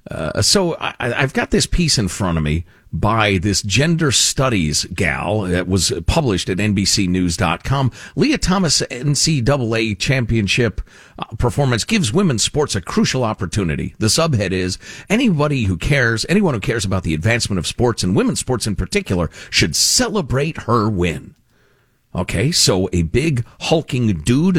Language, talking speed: English, 150 wpm